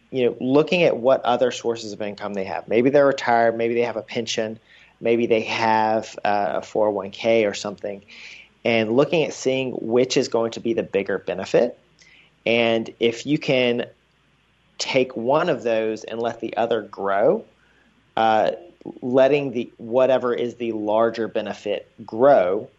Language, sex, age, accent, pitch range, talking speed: English, male, 40-59, American, 110-120 Hz, 160 wpm